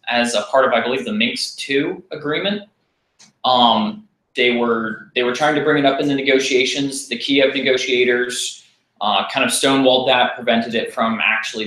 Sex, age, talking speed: male, 20-39, 180 wpm